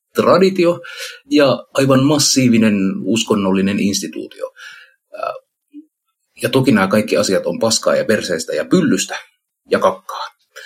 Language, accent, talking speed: Finnish, native, 105 wpm